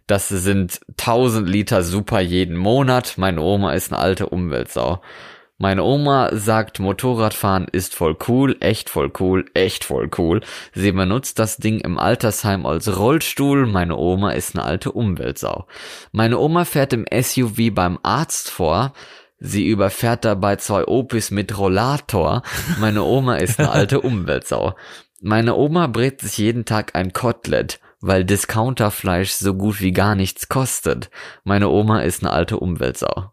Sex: male